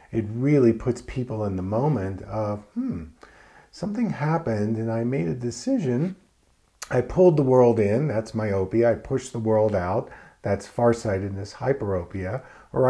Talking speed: 150 wpm